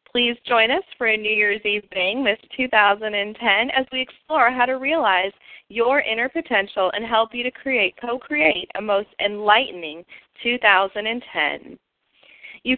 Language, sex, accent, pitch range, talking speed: English, female, American, 190-245 Hz, 140 wpm